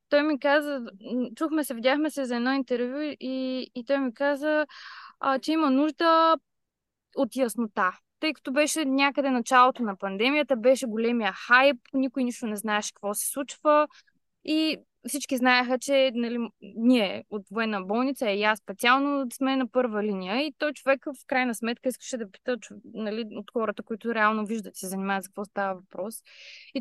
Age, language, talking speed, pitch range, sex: 20-39, Bulgarian, 175 wpm, 210-275 Hz, female